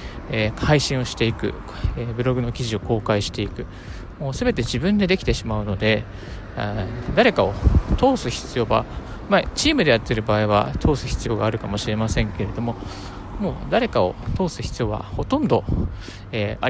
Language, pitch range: Japanese, 100-140 Hz